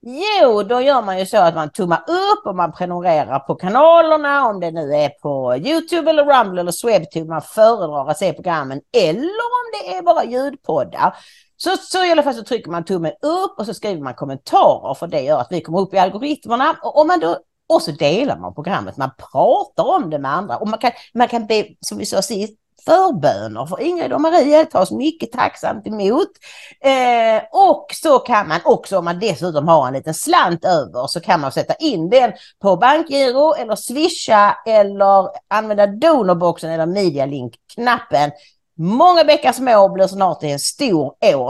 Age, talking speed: 40-59, 190 wpm